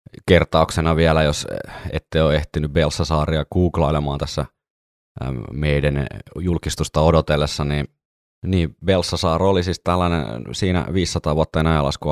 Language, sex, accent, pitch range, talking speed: Finnish, male, native, 70-85 Hz, 105 wpm